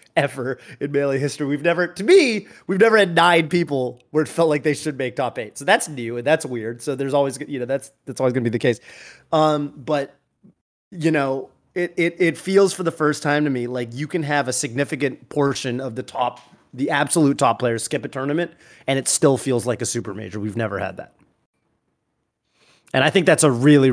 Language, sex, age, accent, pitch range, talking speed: English, male, 30-49, American, 125-155 Hz, 225 wpm